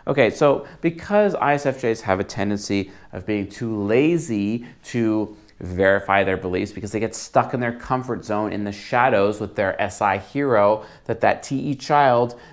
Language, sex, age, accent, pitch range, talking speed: English, male, 30-49, American, 115-160 Hz, 165 wpm